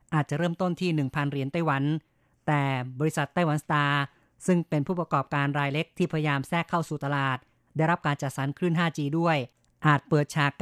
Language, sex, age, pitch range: Thai, female, 30-49, 145-165 Hz